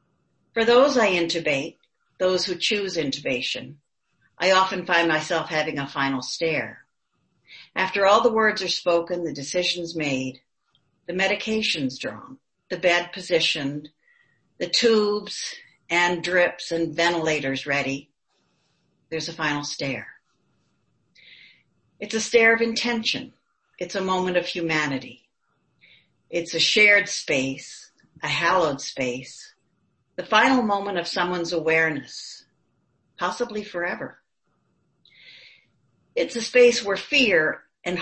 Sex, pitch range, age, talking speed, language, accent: female, 150-200 Hz, 60-79, 115 wpm, English, American